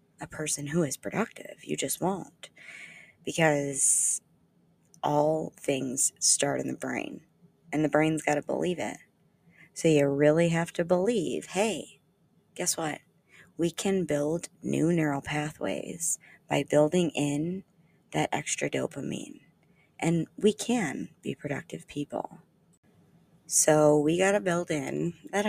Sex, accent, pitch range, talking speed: female, American, 150-175 Hz, 130 wpm